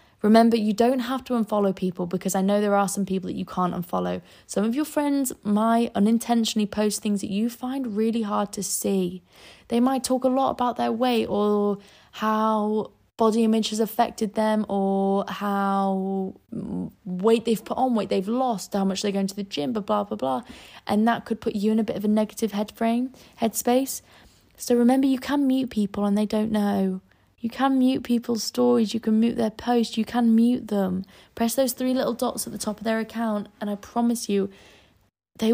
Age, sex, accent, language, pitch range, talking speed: 20-39, female, British, English, 200-235 Hz, 205 wpm